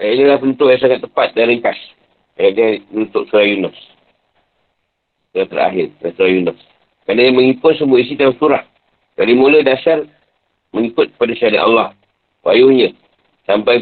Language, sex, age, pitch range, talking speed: Malay, male, 50-69, 120-140 Hz, 145 wpm